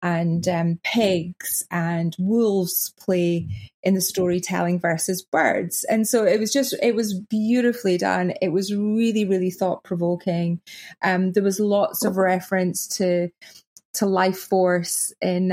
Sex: female